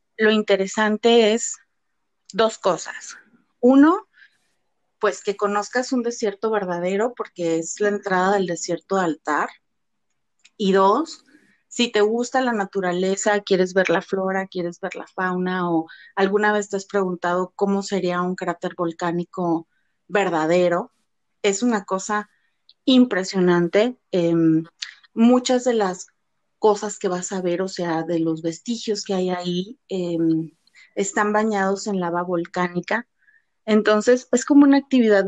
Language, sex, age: Spanish, female, 30-49